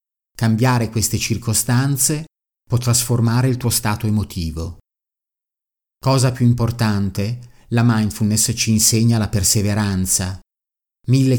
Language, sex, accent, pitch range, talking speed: Italian, male, native, 100-120 Hz, 100 wpm